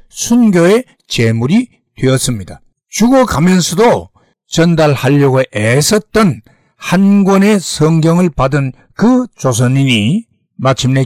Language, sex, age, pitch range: Korean, male, 60-79, 130-190 Hz